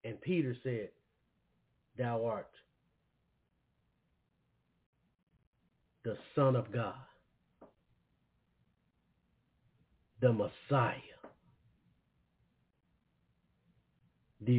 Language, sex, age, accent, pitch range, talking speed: English, male, 50-69, American, 115-170 Hz, 50 wpm